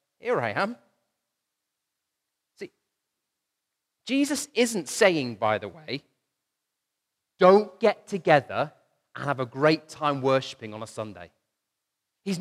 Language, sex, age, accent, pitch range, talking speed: English, male, 30-49, British, 165-235 Hz, 110 wpm